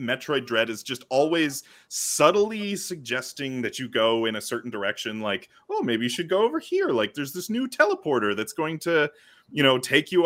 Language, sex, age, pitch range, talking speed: English, male, 30-49, 115-170 Hz, 200 wpm